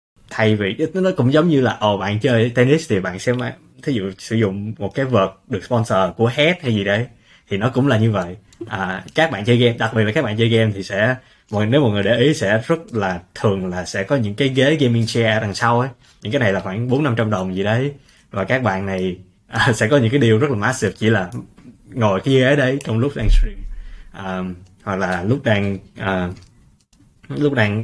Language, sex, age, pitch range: Vietnamese, male, 20-39, 100-125 Hz